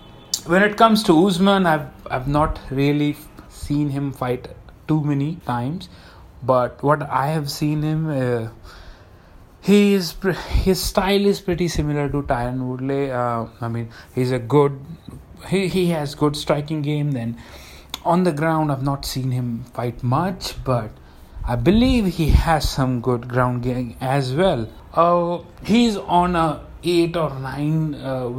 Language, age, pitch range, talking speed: Hindi, 30-49, 125-170 Hz, 155 wpm